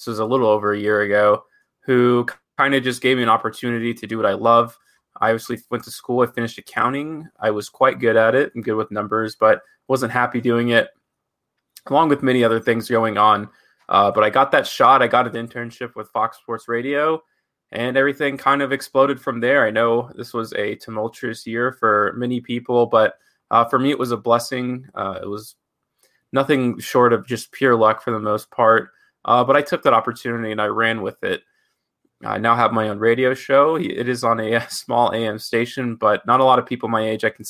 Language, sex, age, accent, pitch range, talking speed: English, male, 20-39, American, 110-130 Hz, 220 wpm